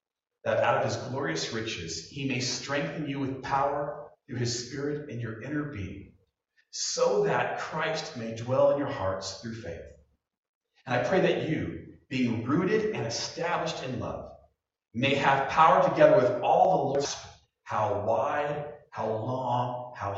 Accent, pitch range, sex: American, 105-145 Hz, male